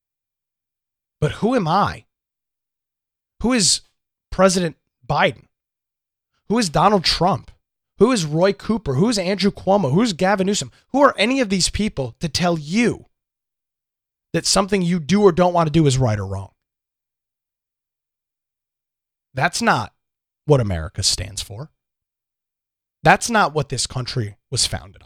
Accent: American